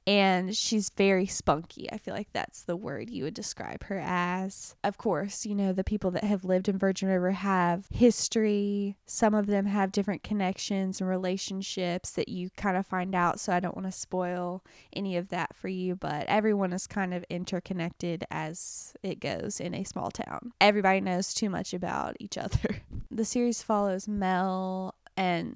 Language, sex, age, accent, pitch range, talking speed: English, female, 10-29, American, 185-215 Hz, 185 wpm